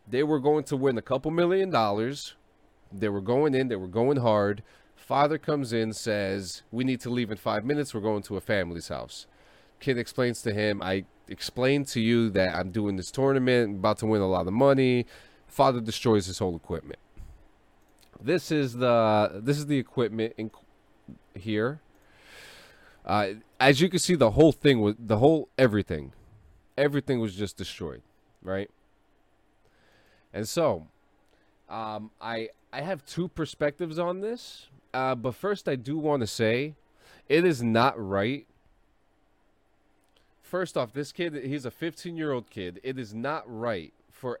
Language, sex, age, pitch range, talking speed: English, male, 30-49, 105-140 Hz, 165 wpm